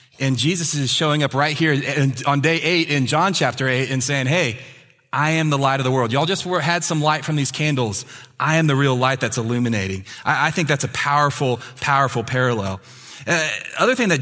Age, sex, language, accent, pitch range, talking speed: 30-49, male, English, American, 130-160 Hz, 210 wpm